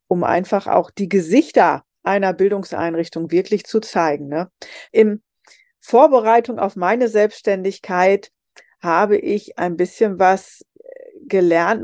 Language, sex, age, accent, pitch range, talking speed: German, female, 40-59, German, 175-225 Hz, 110 wpm